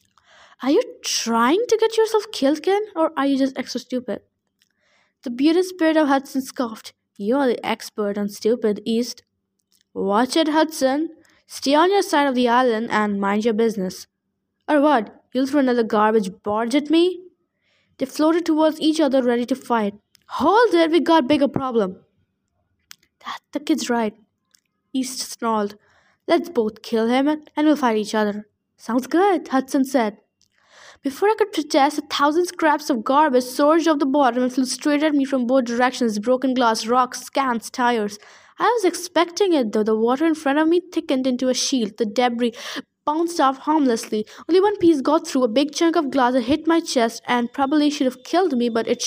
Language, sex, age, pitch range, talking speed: English, female, 10-29, 235-315 Hz, 185 wpm